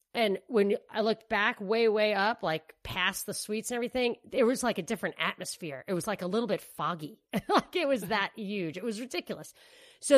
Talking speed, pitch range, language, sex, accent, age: 210 wpm, 185-240 Hz, English, female, American, 40-59